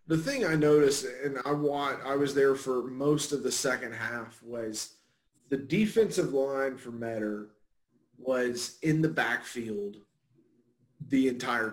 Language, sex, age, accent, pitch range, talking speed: English, male, 30-49, American, 130-155 Hz, 140 wpm